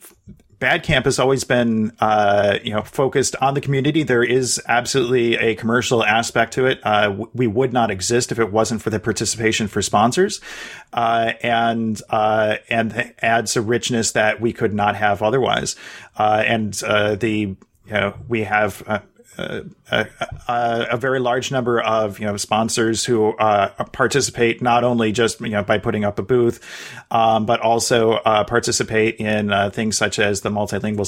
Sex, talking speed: male, 175 wpm